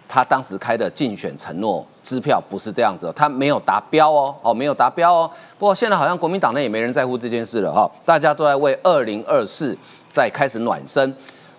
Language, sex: Chinese, male